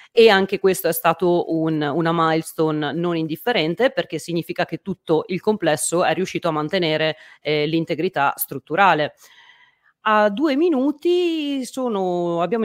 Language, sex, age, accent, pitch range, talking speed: Italian, female, 30-49, native, 160-200 Hz, 125 wpm